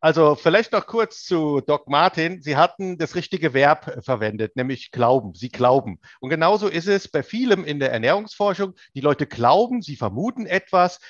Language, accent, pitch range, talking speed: German, German, 145-190 Hz, 175 wpm